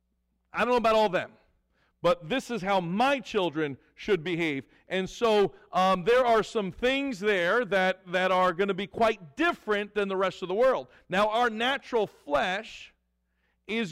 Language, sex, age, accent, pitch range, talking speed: English, male, 40-59, American, 170-220 Hz, 175 wpm